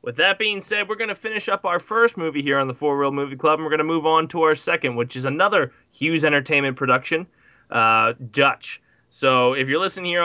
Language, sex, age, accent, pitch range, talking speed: English, male, 20-39, American, 130-160 Hz, 240 wpm